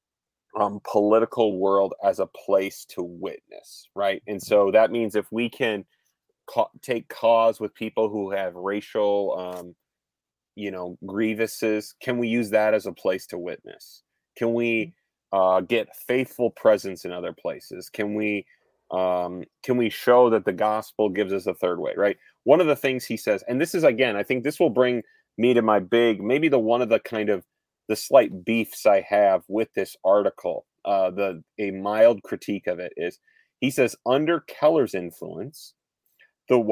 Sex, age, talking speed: male, 30-49, 175 wpm